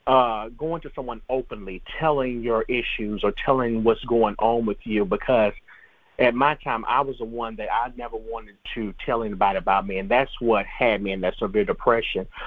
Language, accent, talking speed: English, American, 195 wpm